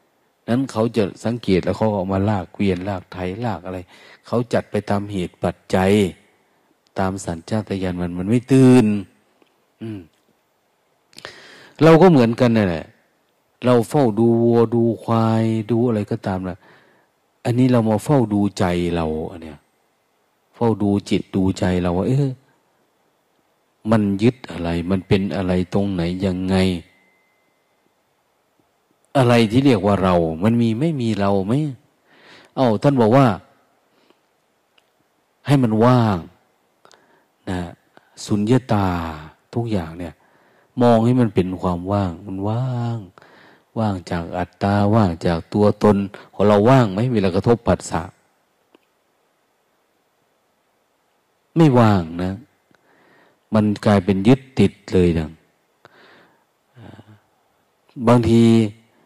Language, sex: Thai, male